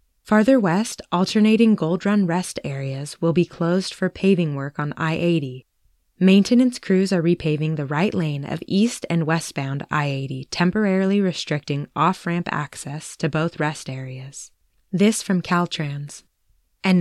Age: 20-39